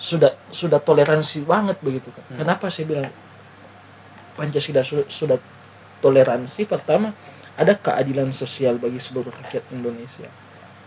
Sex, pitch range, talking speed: male, 120-150 Hz, 110 wpm